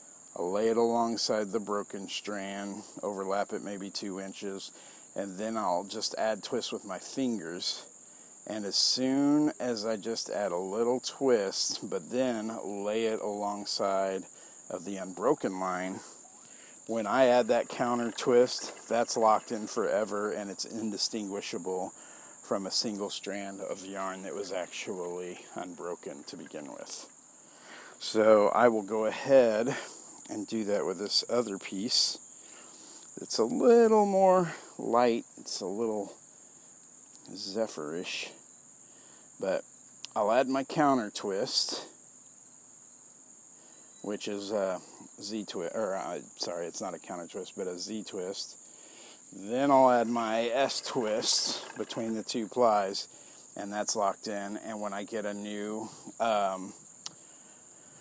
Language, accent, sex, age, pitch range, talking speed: English, American, male, 50-69, 100-120 Hz, 130 wpm